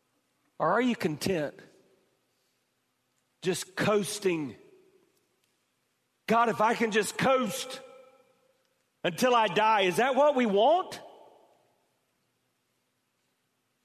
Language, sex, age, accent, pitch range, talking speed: English, male, 50-69, American, 145-185 Hz, 95 wpm